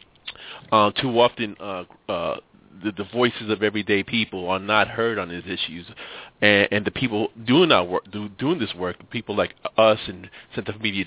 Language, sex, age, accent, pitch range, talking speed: English, male, 30-49, American, 100-115 Hz, 190 wpm